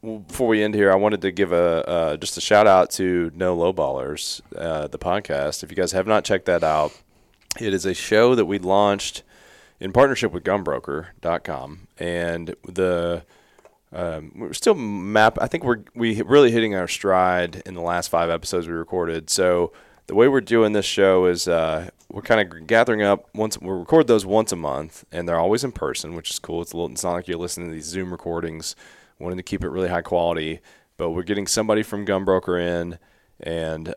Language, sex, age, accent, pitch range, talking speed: English, male, 20-39, American, 85-100 Hz, 210 wpm